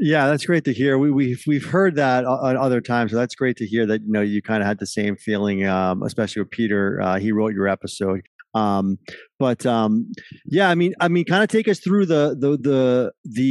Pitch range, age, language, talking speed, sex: 115-150 Hz, 40-59, English, 240 wpm, male